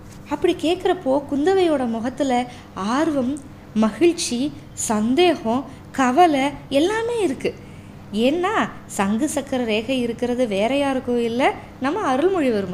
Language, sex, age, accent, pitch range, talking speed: Tamil, female, 20-39, native, 220-295 Hz, 95 wpm